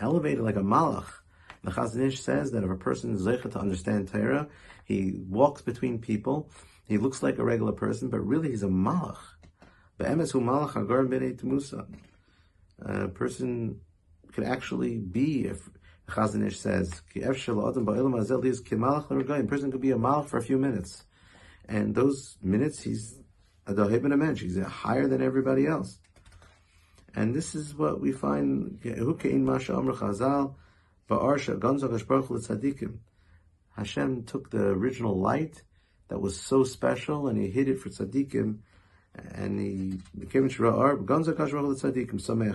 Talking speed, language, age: 120 wpm, English, 50-69